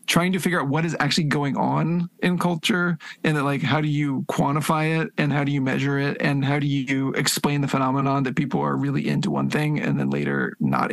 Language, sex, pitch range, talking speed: English, male, 140-170 Hz, 235 wpm